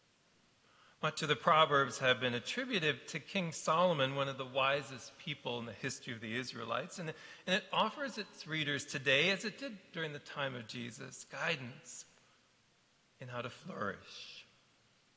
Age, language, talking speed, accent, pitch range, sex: 40-59, English, 160 wpm, American, 125-175 Hz, male